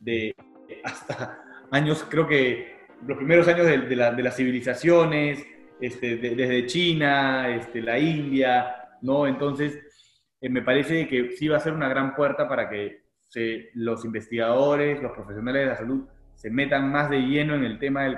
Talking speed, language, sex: 175 wpm, Spanish, male